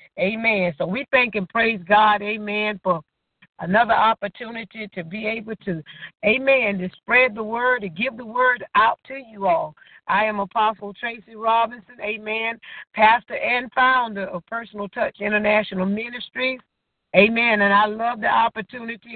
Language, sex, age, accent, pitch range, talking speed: English, female, 50-69, American, 200-250 Hz, 150 wpm